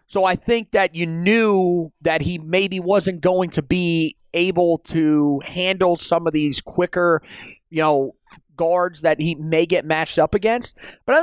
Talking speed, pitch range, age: 170 wpm, 165-205 Hz, 30-49